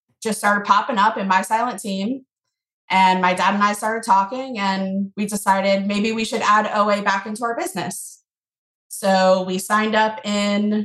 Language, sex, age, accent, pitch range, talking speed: English, female, 20-39, American, 190-230 Hz, 175 wpm